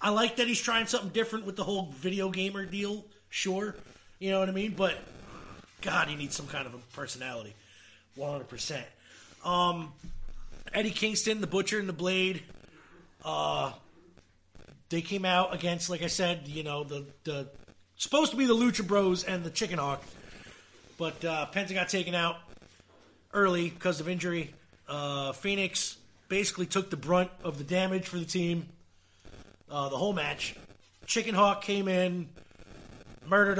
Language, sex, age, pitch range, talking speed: English, male, 30-49, 145-200 Hz, 160 wpm